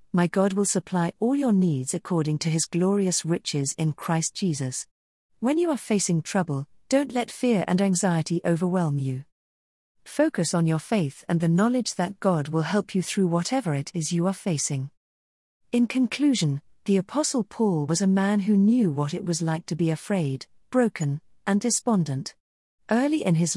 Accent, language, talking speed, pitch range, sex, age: British, English, 175 wpm, 155-215 Hz, female, 40-59